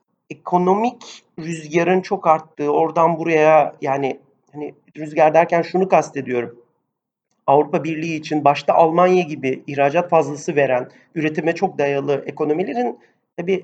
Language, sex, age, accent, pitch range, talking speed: Turkish, male, 40-59, native, 145-190 Hz, 115 wpm